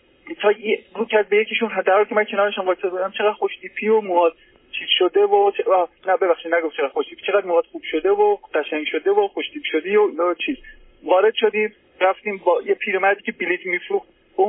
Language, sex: Persian, male